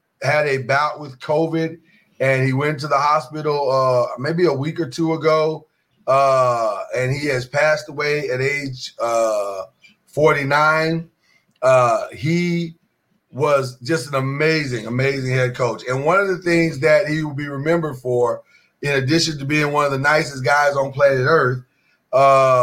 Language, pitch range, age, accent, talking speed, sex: English, 135-165 Hz, 30-49, American, 160 wpm, male